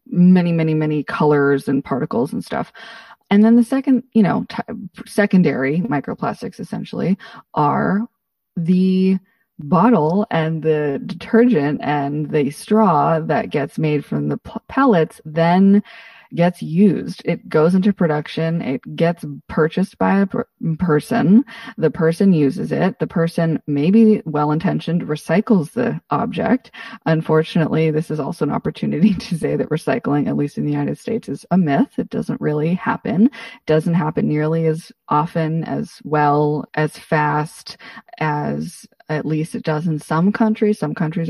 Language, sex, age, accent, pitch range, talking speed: English, female, 20-39, American, 155-225 Hz, 140 wpm